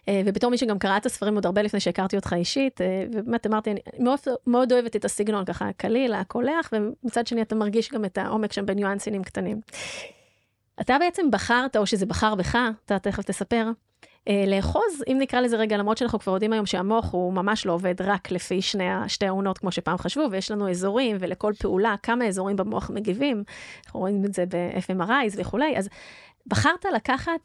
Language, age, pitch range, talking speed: Hebrew, 20-39, 195-235 Hz, 190 wpm